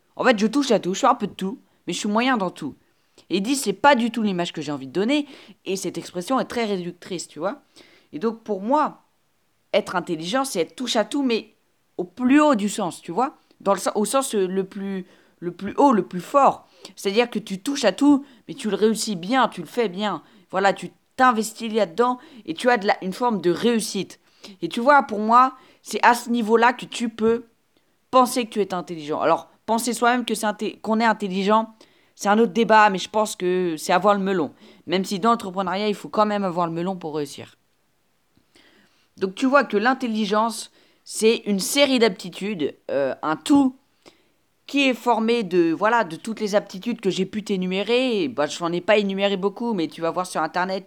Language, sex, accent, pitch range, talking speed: French, female, French, 185-245 Hz, 220 wpm